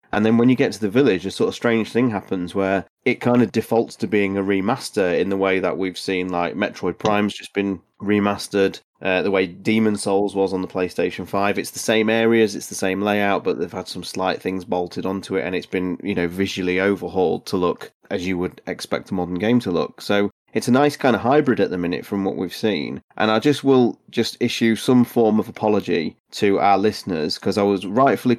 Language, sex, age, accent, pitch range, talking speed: English, male, 30-49, British, 95-115 Hz, 235 wpm